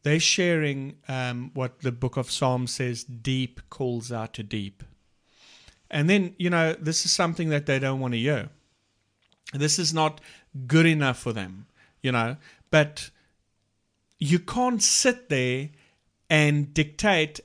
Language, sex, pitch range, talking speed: English, male, 115-150 Hz, 150 wpm